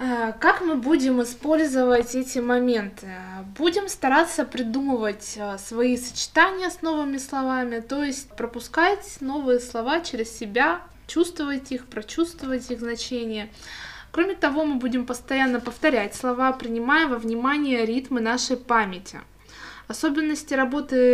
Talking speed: 115 wpm